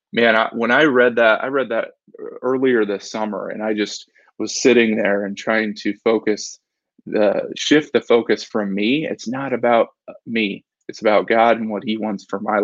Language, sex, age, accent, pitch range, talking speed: English, male, 20-39, American, 105-120 Hz, 185 wpm